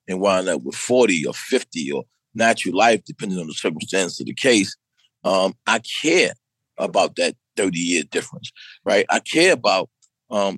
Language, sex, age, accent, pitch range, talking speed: English, male, 40-59, American, 110-140 Hz, 165 wpm